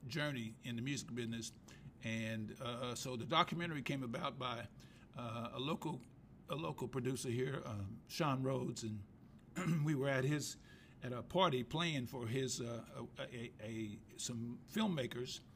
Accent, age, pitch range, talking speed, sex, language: American, 50-69, 115-135 Hz, 155 wpm, male, English